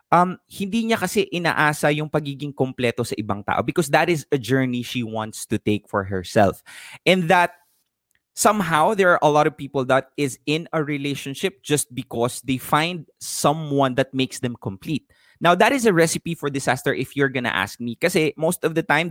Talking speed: 195 wpm